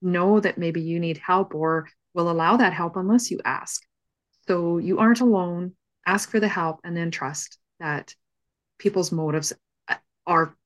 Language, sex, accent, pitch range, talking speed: English, female, American, 150-175 Hz, 165 wpm